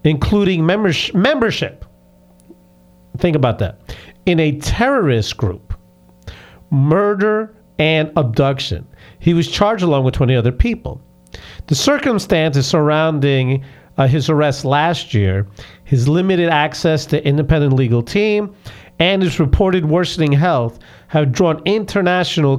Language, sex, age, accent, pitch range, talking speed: English, male, 50-69, American, 120-170 Hz, 115 wpm